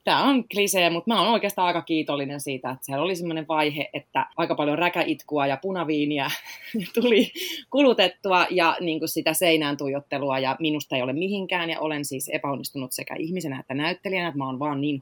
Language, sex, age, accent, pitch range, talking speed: Finnish, female, 30-49, native, 150-205 Hz, 185 wpm